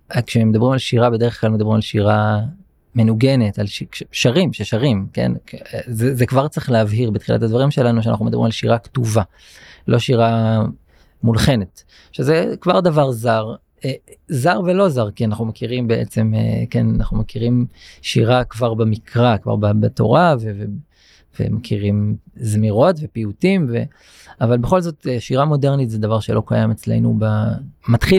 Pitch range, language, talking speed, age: 110-135 Hz, Hebrew, 145 wpm, 30-49